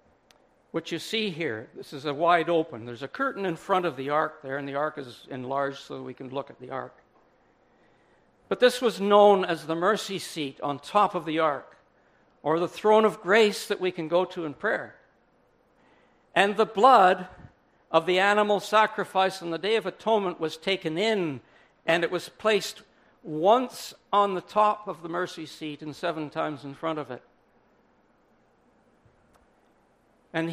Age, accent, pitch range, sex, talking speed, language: 60-79, American, 160-210 Hz, male, 180 wpm, English